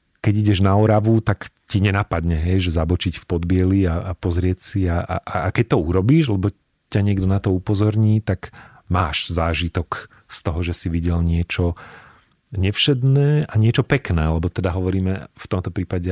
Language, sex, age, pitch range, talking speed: Slovak, male, 40-59, 90-110 Hz, 170 wpm